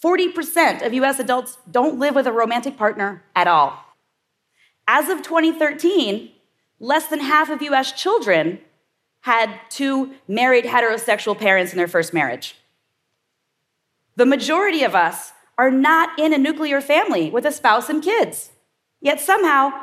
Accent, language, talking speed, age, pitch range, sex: American, English, 140 wpm, 30-49, 230-310 Hz, female